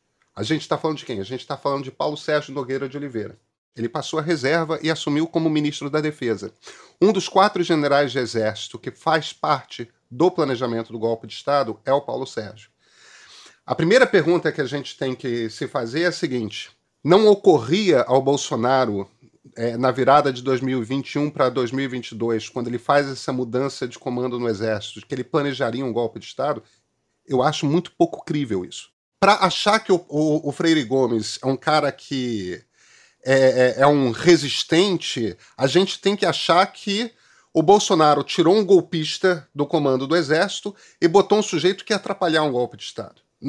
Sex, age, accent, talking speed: male, 40-59, Brazilian, 180 wpm